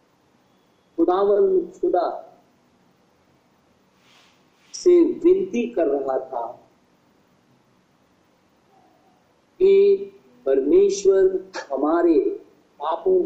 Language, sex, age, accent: Hindi, male, 50-69, native